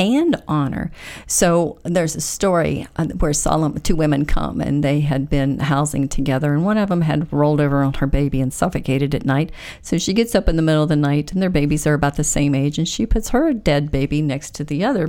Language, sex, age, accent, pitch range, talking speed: English, female, 50-69, American, 145-195 Hz, 235 wpm